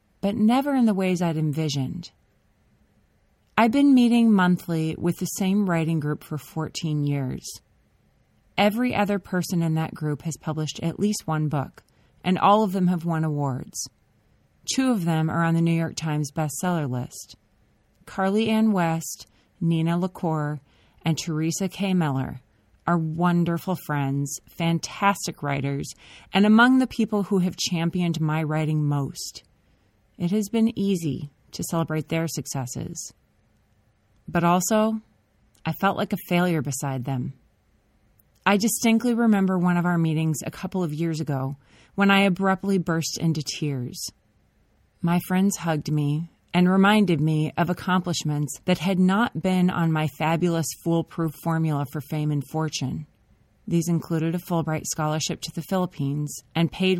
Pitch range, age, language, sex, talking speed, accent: 150-185 Hz, 30-49, English, female, 145 wpm, American